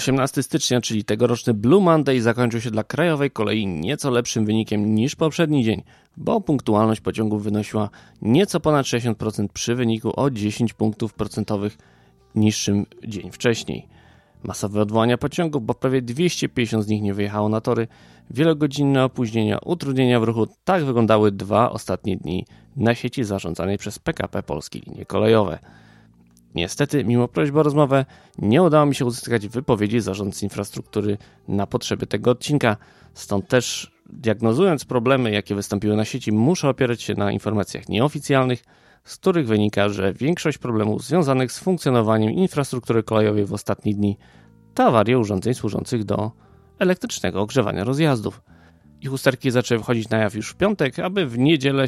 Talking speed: 150 wpm